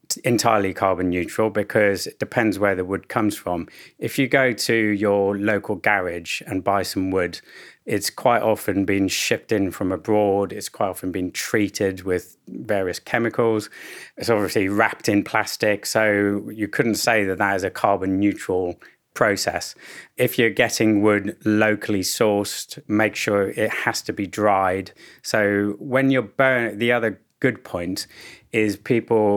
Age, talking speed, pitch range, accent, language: 30-49, 155 wpm, 95-110 Hz, British, English